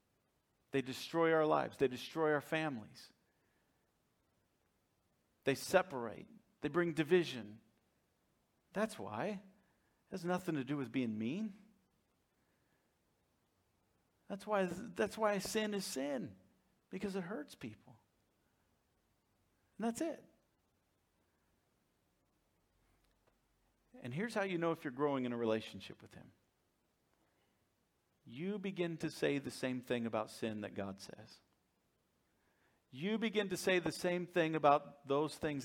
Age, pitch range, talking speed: 50-69, 115-165 Hz, 120 wpm